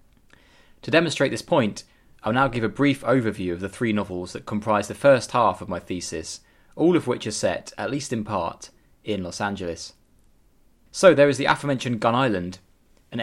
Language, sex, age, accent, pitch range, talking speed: English, male, 20-39, British, 95-120 Hz, 190 wpm